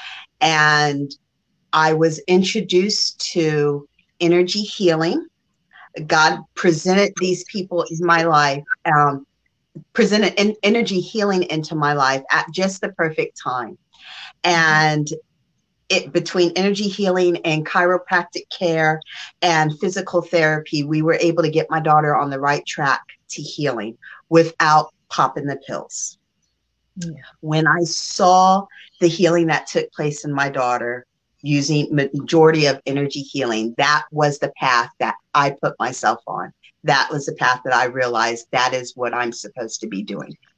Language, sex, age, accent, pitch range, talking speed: English, female, 40-59, American, 140-175 Hz, 140 wpm